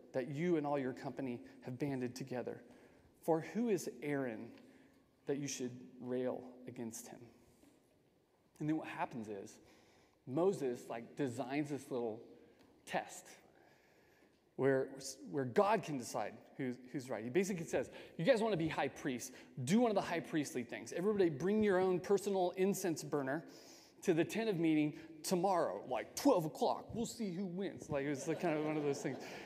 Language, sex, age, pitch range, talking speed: English, male, 30-49, 135-185 Hz, 175 wpm